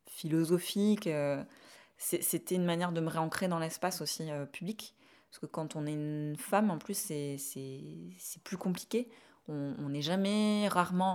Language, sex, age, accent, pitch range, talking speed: French, female, 20-39, French, 150-185 Hz, 170 wpm